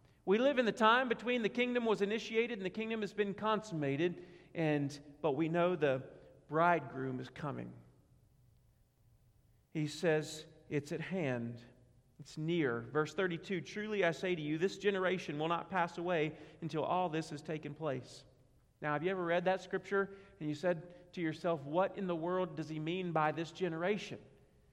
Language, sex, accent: English, male, American